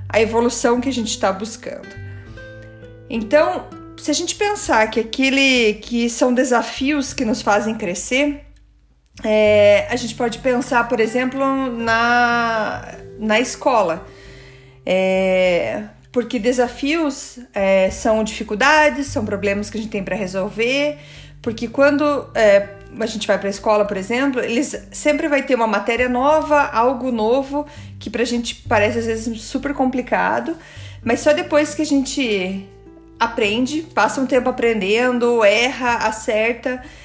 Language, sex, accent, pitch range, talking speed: Portuguese, female, Brazilian, 210-265 Hz, 140 wpm